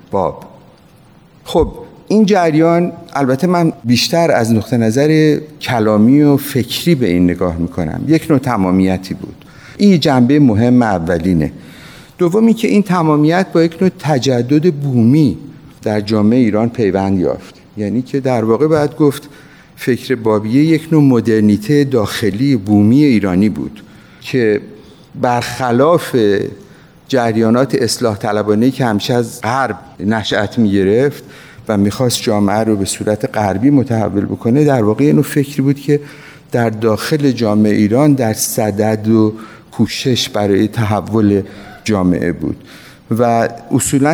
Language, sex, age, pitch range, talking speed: Persian, male, 50-69, 105-145 Hz, 130 wpm